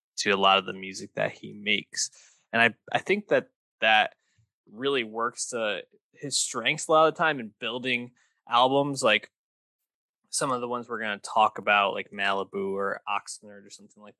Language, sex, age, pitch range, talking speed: English, male, 20-39, 105-130 Hz, 190 wpm